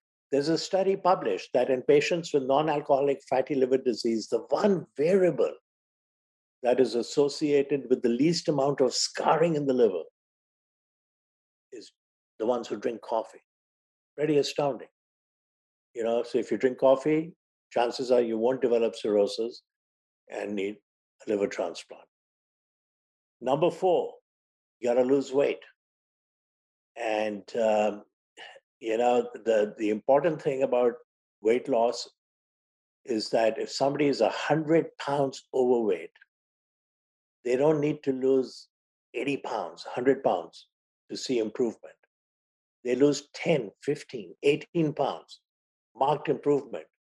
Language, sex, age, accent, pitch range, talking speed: English, male, 50-69, Indian, 120-155 Hz, 125 wpm